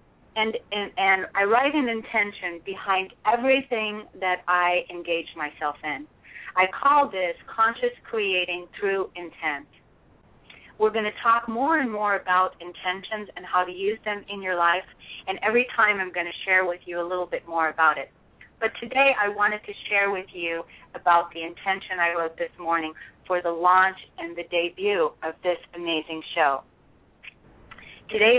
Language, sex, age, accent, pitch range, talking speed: English, female, 30-49, American, 170-210 Hz, 165 wpm